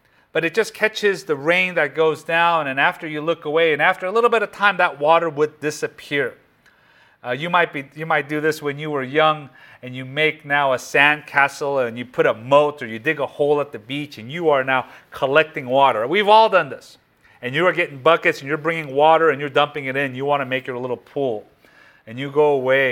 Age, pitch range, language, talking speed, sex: 40-59, 130-185 Hz, English, 240 wpm, male